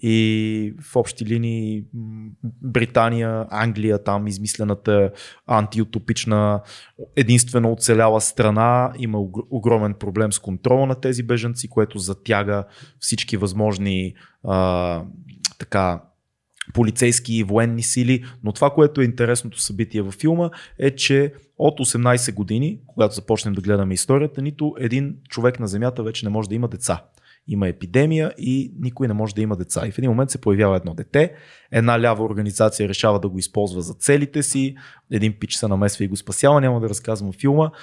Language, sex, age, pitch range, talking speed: Bulgarian, male, 20-39, 100-125 Hz, 155 wpm